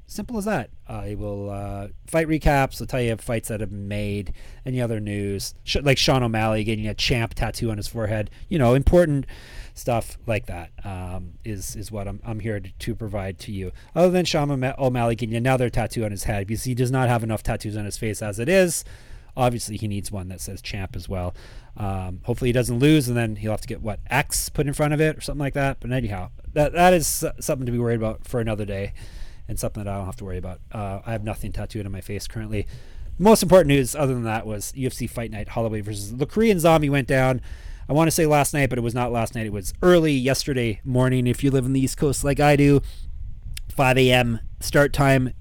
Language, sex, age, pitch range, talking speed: English, male, 30-49, 105-130 Hz, 240 wpm